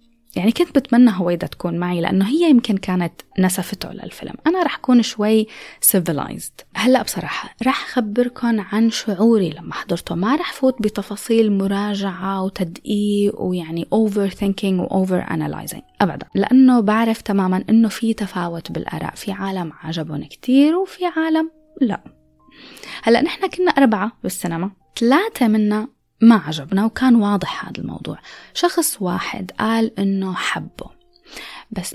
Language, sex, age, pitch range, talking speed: Arabic, female, 20-39, 185-245 Hz, 130 wpm